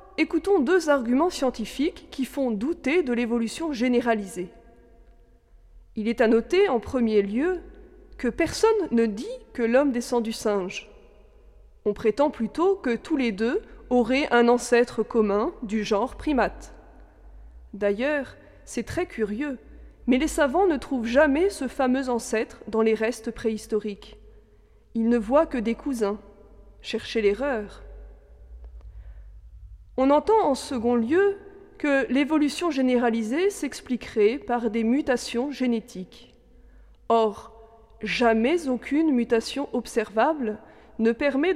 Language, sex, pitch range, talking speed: French, female, 225-300 Hz, 125 wpm